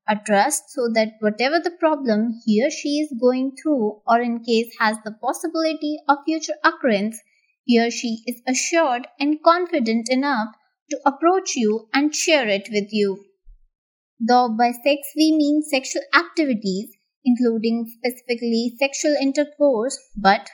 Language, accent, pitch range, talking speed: English, Indian, 225-295 Hz, 145 wpm